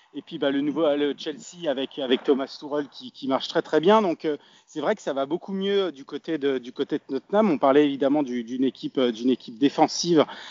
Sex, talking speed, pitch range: male, 225 wpm, 135-170 Hz